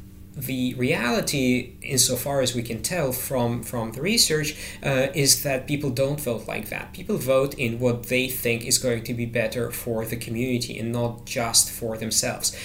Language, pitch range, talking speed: English, 110-140 Hz, 180 wpm